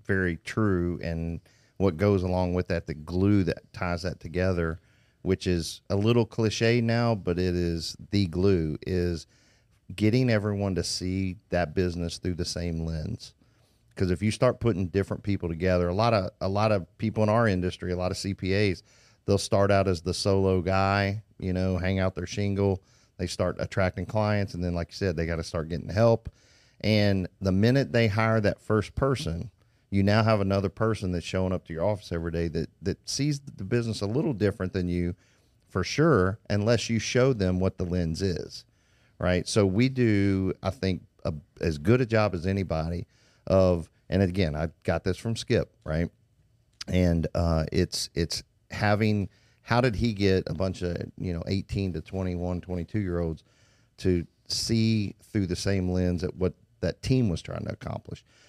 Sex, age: male, 40-59